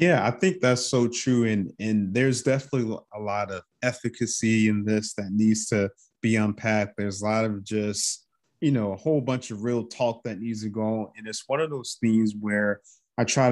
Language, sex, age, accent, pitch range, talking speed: English, male, 20-39, American, 100-120 Hz, 215 wpm